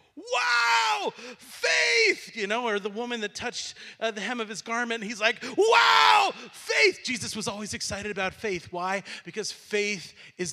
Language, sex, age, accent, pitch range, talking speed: English, male, 40-59, American, 175-220 Hz, 165 wpm